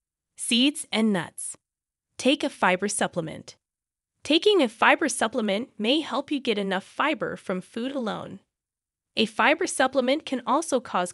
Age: 20-39